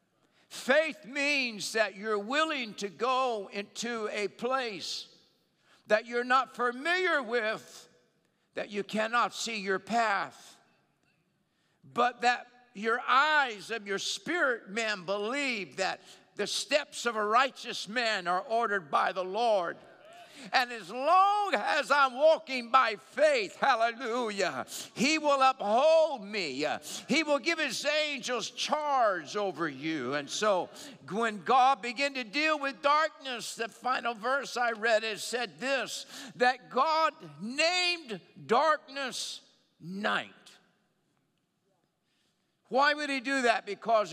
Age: 60-79